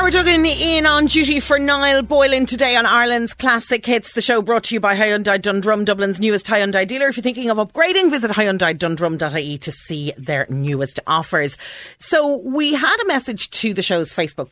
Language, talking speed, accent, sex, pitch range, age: English, 185 wpm, Irish, female, 145-225 Hz, 40-59